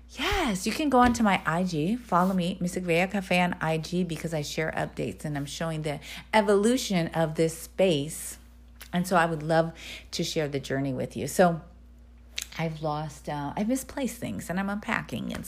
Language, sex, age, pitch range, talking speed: English, female, 40-59, 130-195 Hz, 185 wpm